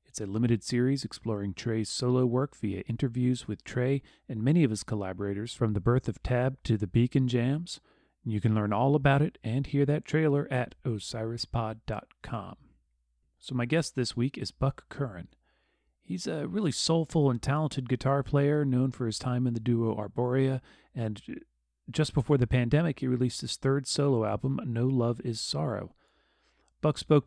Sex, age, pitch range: male, 40-59, 115-135 Hz